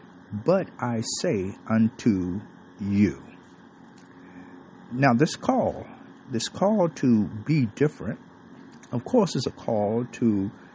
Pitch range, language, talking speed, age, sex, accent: 105-130 Hz, English, 105 wpm, 50-69, male, American